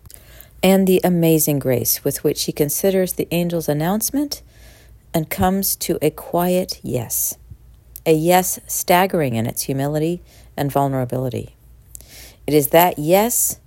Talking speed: 125 wpm